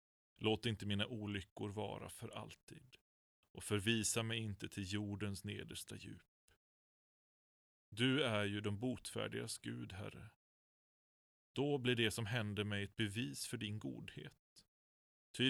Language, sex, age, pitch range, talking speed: Swedish, male, 30-49, 100-125 Hz, 130 wpm